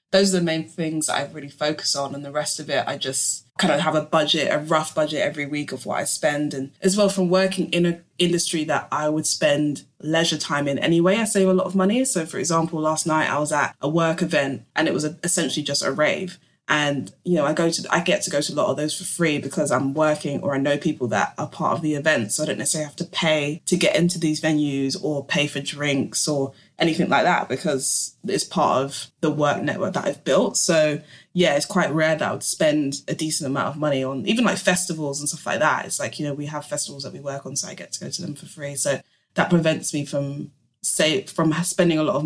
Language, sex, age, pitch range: English, female, 20-39, 145-170 Hz